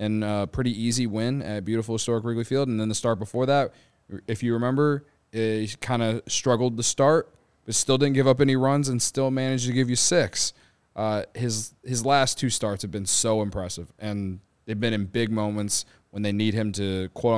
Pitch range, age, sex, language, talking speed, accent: 105-130 Hz, 20-39, male, English, 210 wpm, American